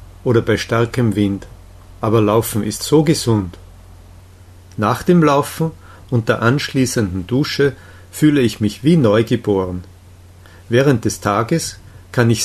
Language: Japanese